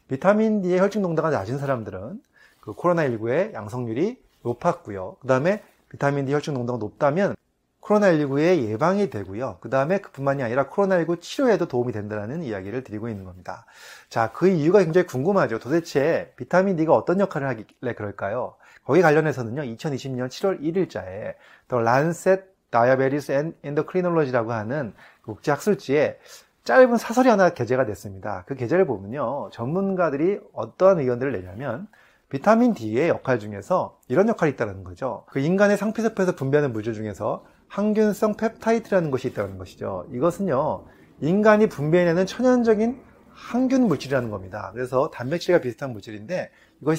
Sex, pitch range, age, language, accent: male, 125-190 Hz, 30-49, Korean, native